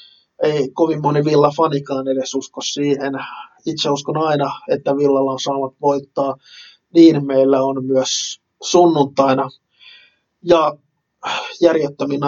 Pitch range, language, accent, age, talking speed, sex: 140-155 Hz, Finnish, native, 20-39, 110 wpm, male